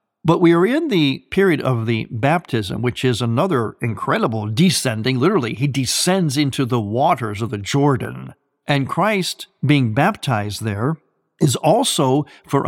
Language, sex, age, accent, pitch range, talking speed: English, male, 50-69, American, 125-160 Hz, 145 wpm